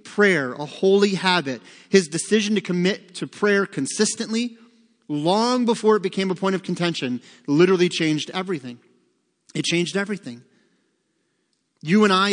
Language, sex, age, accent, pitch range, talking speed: English, male, 30-49, American, 140-185 Hz, 135 wpm